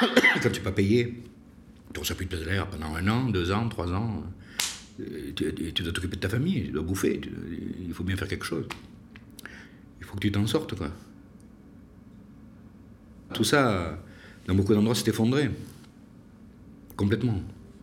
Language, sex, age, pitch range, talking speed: French, male, 60-79, 95-120 Hz, 170 wpm